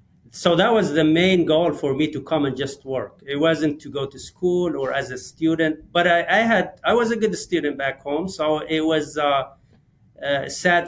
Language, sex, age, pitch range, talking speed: English, male, 40-59, 140-170 Hz, 220 wpm